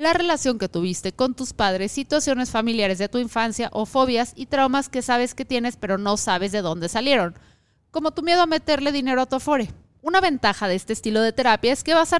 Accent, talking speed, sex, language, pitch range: Mexican, 225 wpm, female, Spanish, 205-270 Hz